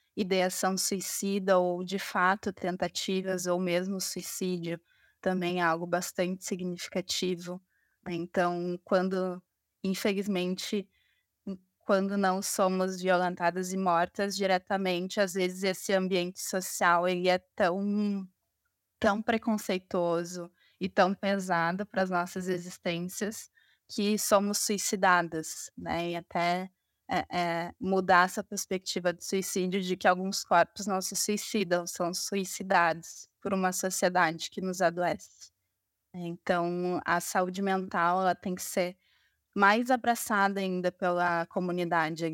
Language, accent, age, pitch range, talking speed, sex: Portuguese, Brazilian, 20-39, 175-195 Hz, 115 wpm, female